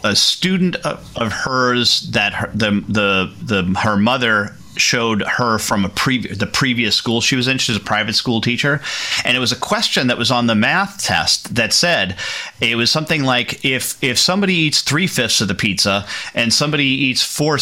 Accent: American